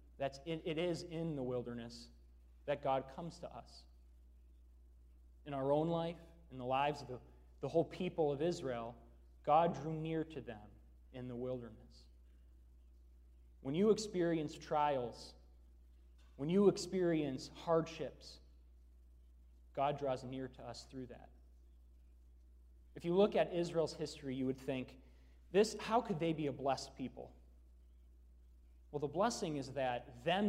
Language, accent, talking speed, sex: English, American, 140 wpm, male